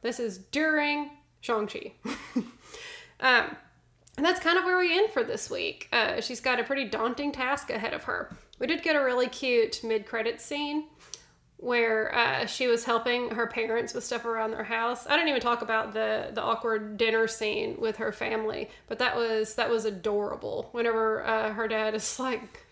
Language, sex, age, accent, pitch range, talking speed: English, female, 20-39, American, 225-290 Hz, 190 wpm